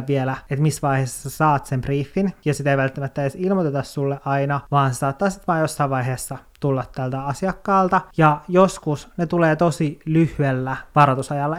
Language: Finnish